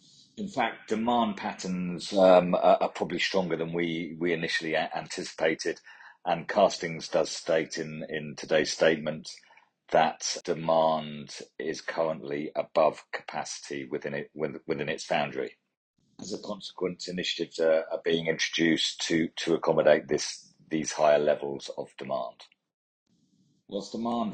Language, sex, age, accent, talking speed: English, male, 40-59, British, 130 wpm